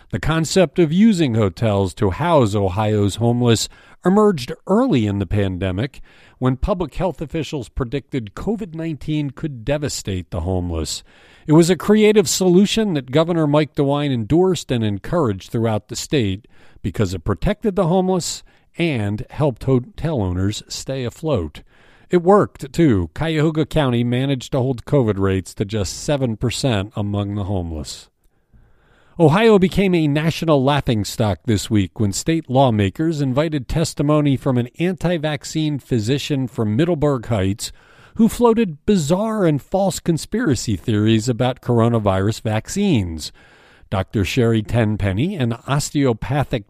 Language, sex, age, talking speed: English, male, 50-69, 130 wpm